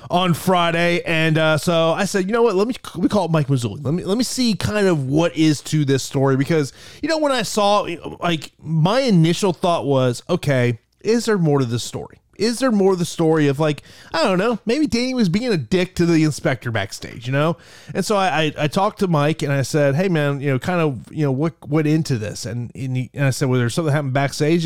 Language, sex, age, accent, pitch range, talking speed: English, male, 30-49, American, 130-180 Hz, 255 wpm